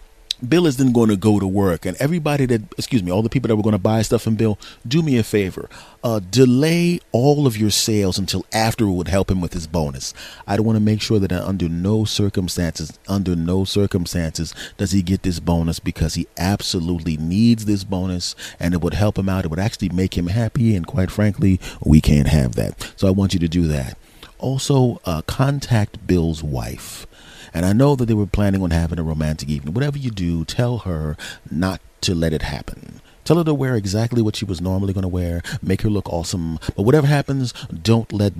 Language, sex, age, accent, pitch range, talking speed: English, male, 30-49, American, 85-110 Hz, 220 wpm